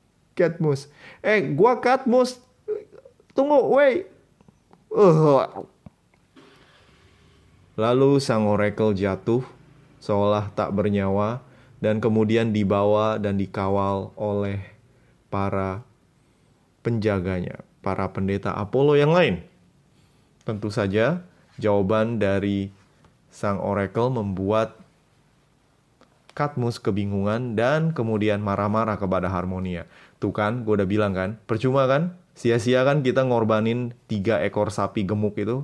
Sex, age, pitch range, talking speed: male, 20-39, 100-135 Hz, 95 wpm